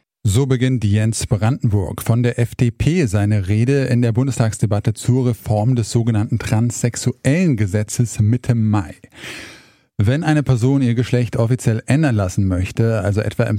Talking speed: 140 wpm